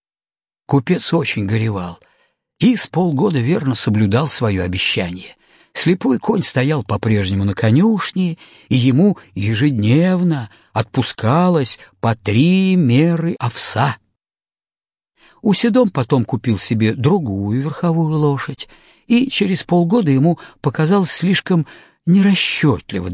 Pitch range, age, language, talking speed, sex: 110-180 Hz, 50-69, Russian, 100 wpm, male